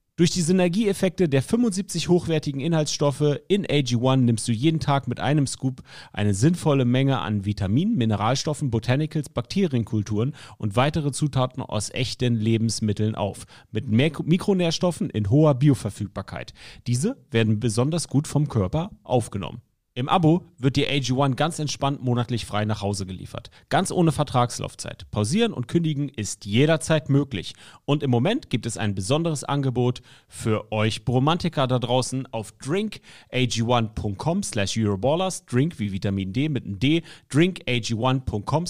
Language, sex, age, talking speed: German, male, 40-59, 140 wpm